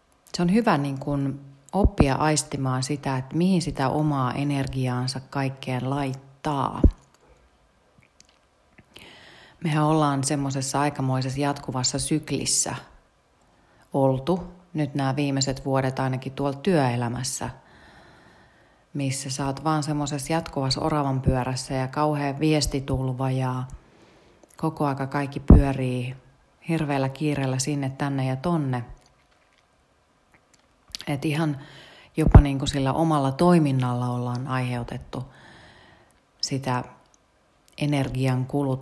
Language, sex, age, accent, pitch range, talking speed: Finnish, female, 30-49, native, 130-150 Hz, 95 wpm